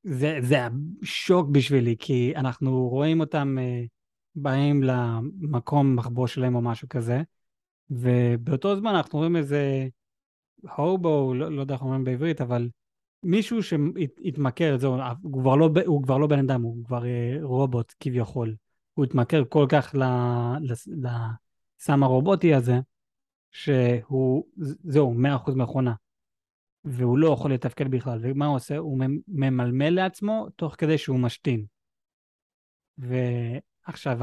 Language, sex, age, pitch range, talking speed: Hebrew, male, 20-39, 125-170 Hz, 120 wpm